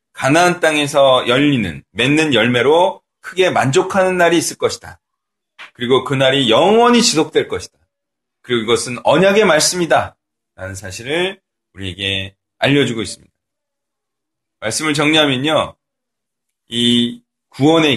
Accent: native